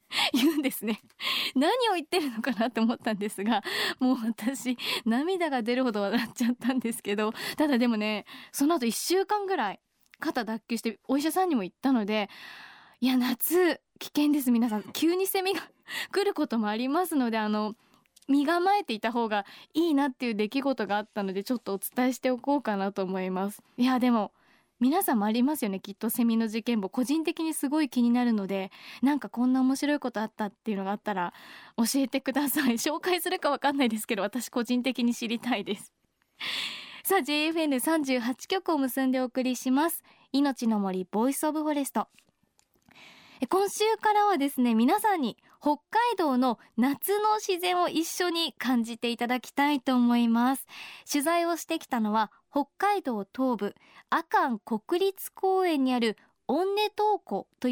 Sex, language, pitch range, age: female, Japanese, 230-315 Hz, 20-39